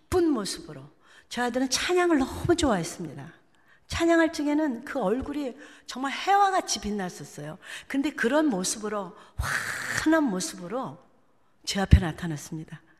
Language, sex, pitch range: Korean, female, 185-260 Hz